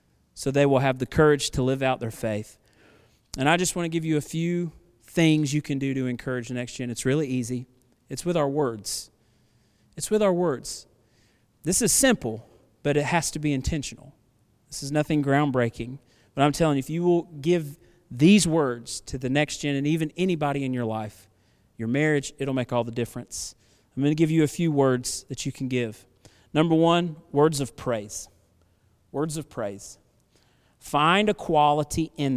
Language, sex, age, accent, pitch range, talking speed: English, male, 40-59, American, 120-155 Hz, 195 wpm